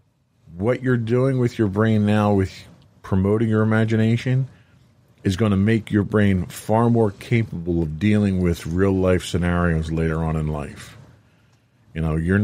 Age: 40-59